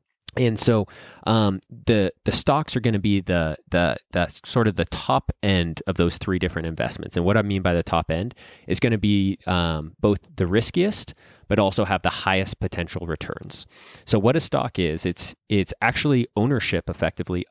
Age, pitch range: 30-49, 85-110 Hz